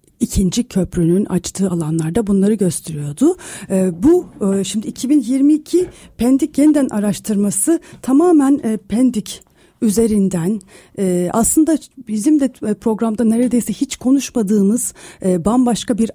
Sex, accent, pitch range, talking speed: female, native, 195-260 Hz, 90 wpm